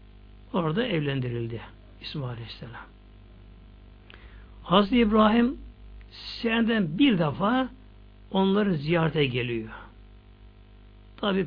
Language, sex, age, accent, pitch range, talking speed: Turkish, male, 60-79, native, 105-170 Hz, 70 wpm